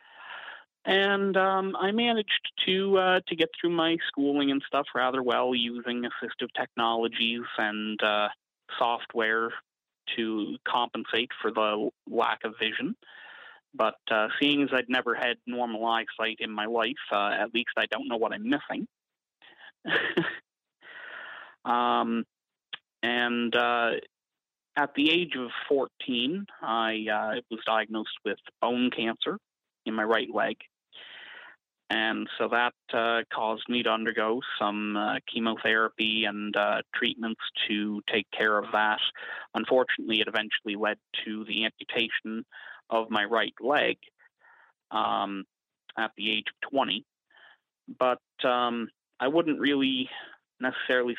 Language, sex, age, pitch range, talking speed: English, male, 30-49, 110-135 Hz, 130 wpm